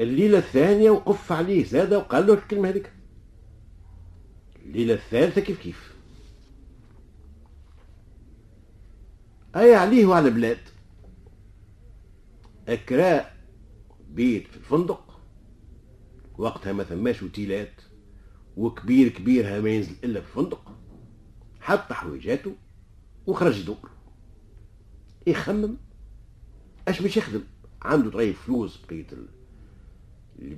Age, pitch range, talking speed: 50-69, 95-120 Hz, 90 wpm